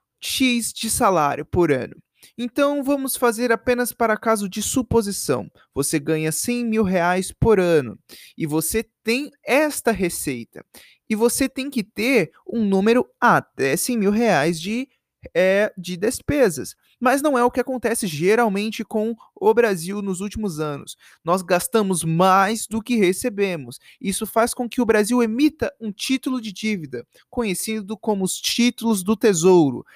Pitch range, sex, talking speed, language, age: 185-250 Hz, male, 150 wpm, Portuguese, 20-39